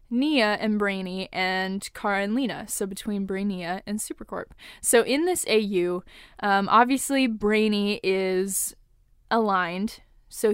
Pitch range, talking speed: 195-260 Hz, 125 wpm